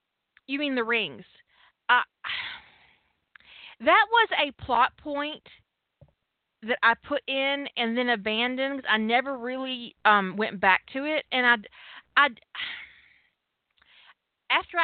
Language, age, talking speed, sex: English, 30-49, 115 wpm, female